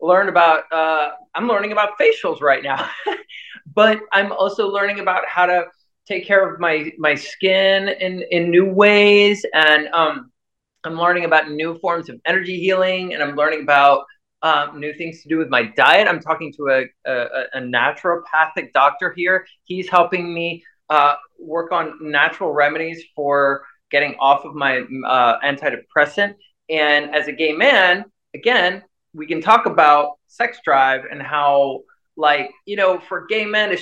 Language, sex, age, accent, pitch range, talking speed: English, male, 30-49, American, 150-200 Hz, 165 wpm